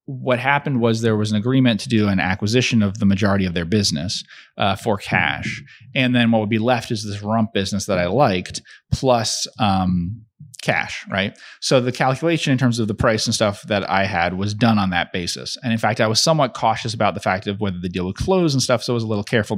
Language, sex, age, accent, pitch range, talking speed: English, male, 30-49, American, 100-130 Hz, 240 wpm